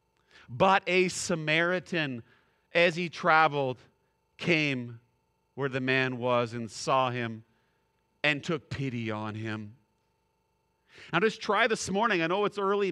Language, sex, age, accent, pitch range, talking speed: English, male, 50-69, American, 150-215 Hz, 130 wpm